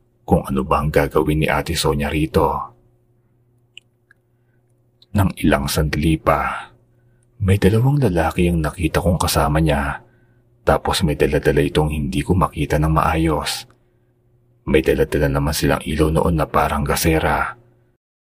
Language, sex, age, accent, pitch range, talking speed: Filipino, male, 30-49, native, 75-120 Hz, 130 wpm